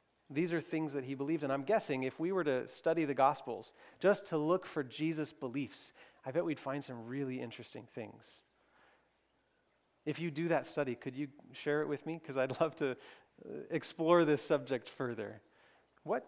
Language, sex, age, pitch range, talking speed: English, male, 30-49, 135-165 Hz, 185 wpm